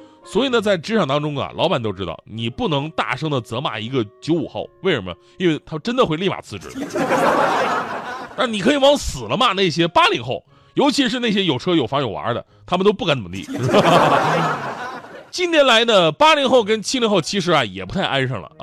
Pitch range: 125-190 Hz